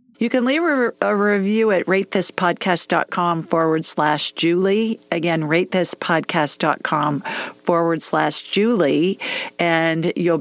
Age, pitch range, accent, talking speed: 40-59, 155-200 Hz, American, 100 wpm